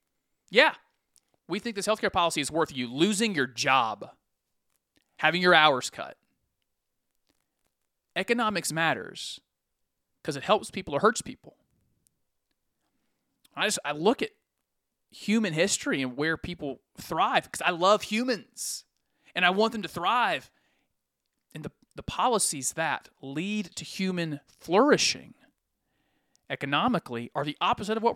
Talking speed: 130 wpm